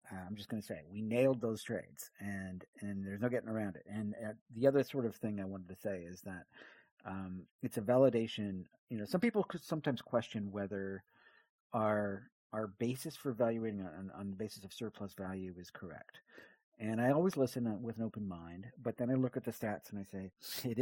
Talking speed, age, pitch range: 215 wpm, 40-59, 100-125 Hz